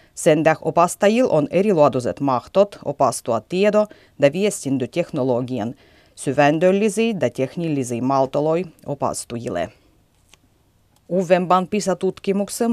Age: 30-49